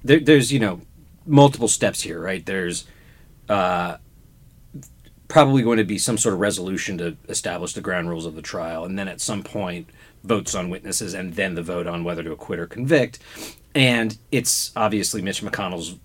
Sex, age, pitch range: male, 40-59, 85-115 Hz